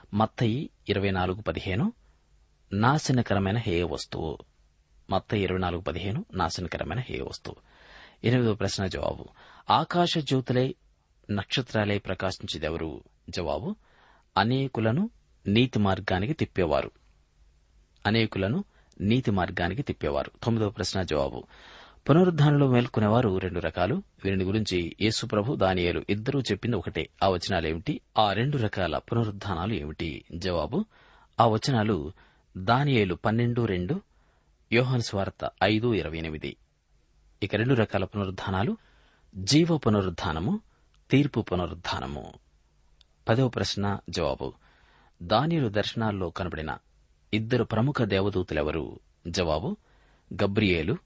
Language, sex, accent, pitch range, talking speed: Telugu, male, native, 85-115 Hz, 85 wpm